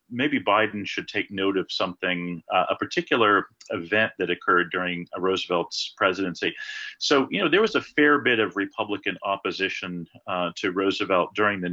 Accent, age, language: American, 40-59, English